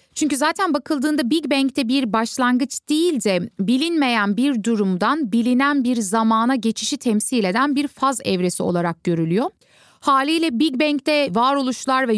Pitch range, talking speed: 200-275 Hz, 140 wpm